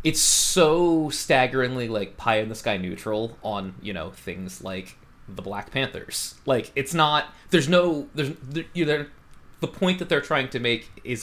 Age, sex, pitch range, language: 20-39, male, 105-135 Hz, English